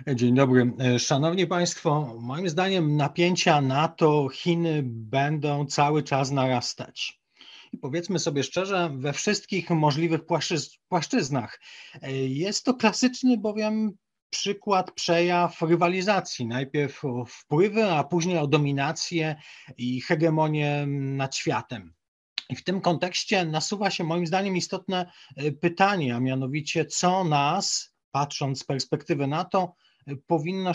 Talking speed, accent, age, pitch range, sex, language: 110 wpm, native, 40-59, 135-175 Hz, male, Polish